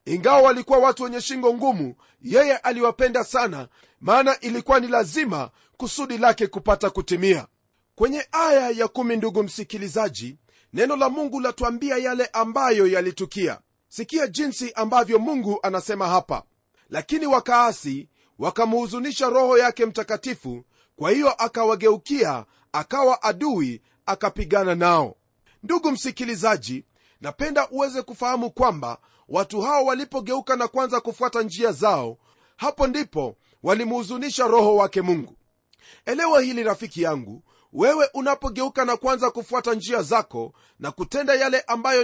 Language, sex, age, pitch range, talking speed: Swahili, male, 40-59, 200-260 Hz, 120 wpm